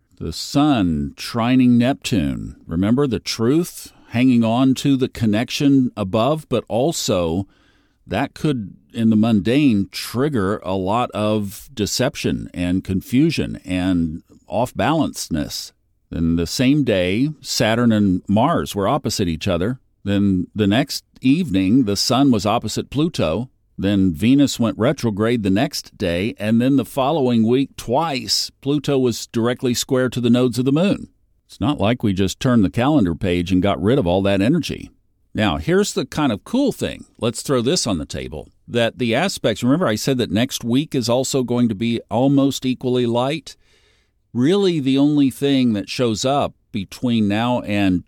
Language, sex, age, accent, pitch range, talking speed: English, male, 50-69, American, 100-130 Hz, 160 wpm